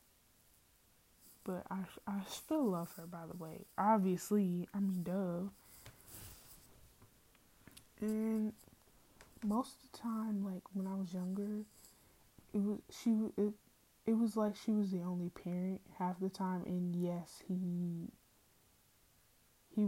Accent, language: American, English